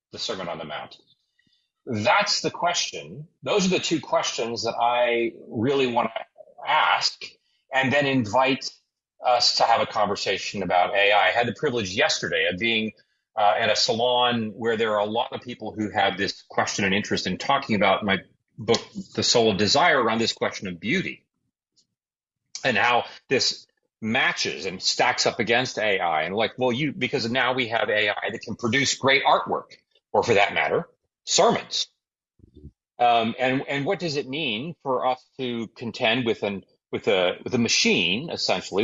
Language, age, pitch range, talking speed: English, 30-49, 115-160 Hz, 175 wpm